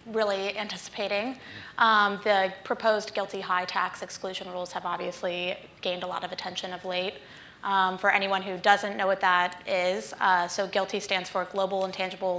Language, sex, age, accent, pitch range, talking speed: English, female, 20-39, American, 185-205 Hz, 165 wpm